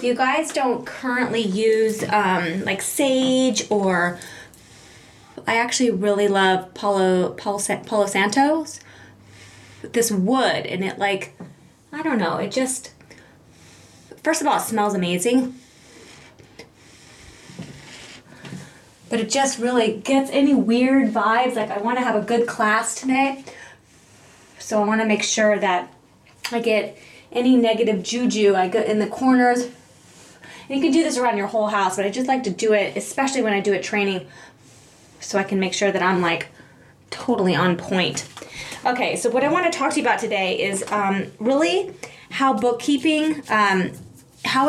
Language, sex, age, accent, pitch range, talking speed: English, female, 20-39, American, 200-255 Hz, 155 wpm